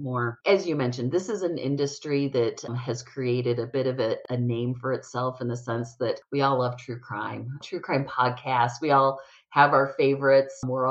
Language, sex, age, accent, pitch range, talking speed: English, female, 30-49, American, 130-155 Hz, 205 wpm